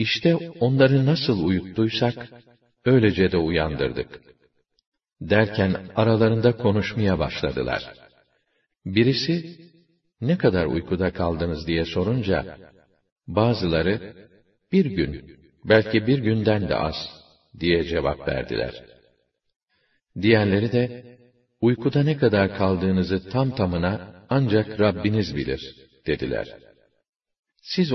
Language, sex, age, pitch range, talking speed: Arabic, male, 50-69, 95-120 Hz, 90 wpm